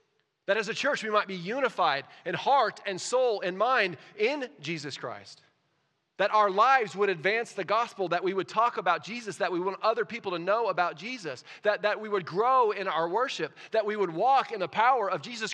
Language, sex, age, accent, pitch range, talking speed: English, male, 30-49, American, 140-195 Hz, 215 wpm